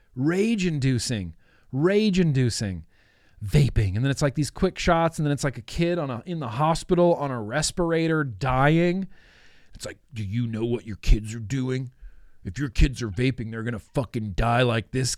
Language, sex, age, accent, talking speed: English, male, 40-59, American, 195 wpm